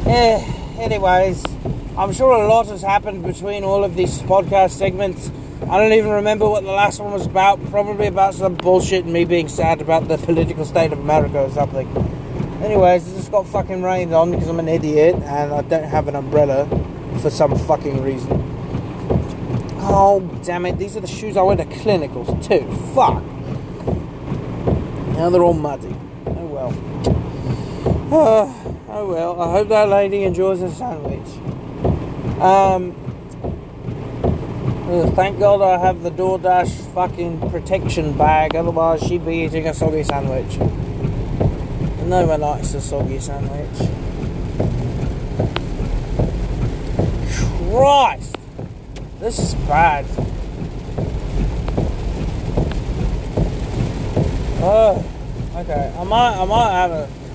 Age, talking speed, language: 30-49, 130 wpm, English